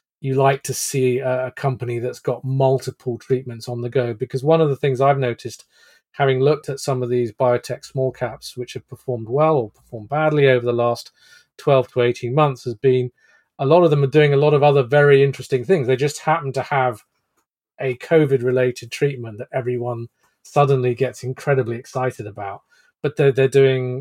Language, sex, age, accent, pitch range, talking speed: English, male, 40-59, British, 125-145 Hz, 195 wpm